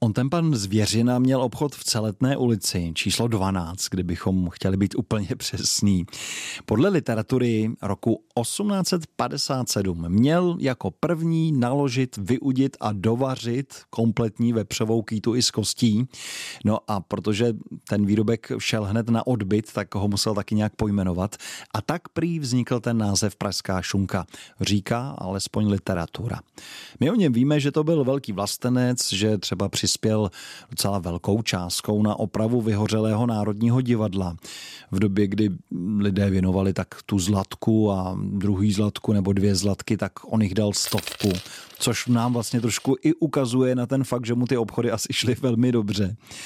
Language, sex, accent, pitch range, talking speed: Czech, male, native, 100-125 Hz, 150 wpm